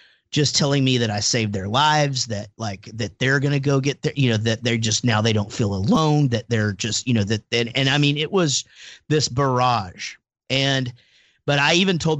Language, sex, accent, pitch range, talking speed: English, male, American, 110-140 Hz, 225 wpm